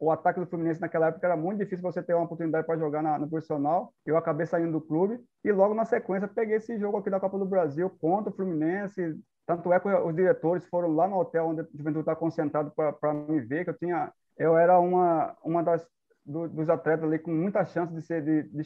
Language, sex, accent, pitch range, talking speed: Portuguese, male, Brazilian, 160-180 Hz, 240 wpm